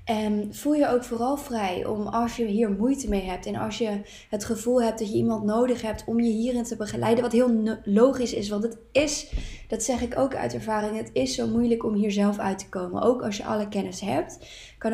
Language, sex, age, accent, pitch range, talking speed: Dutch, female, 20-39, Dutch, 200-235 Hz, 235 wpm